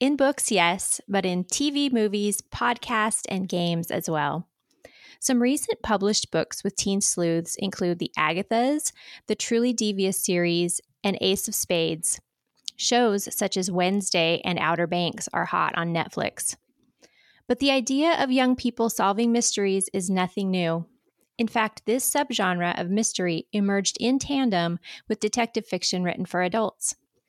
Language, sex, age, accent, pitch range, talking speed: English, female, 20-39, American, 180-235 Hz, 145 wpm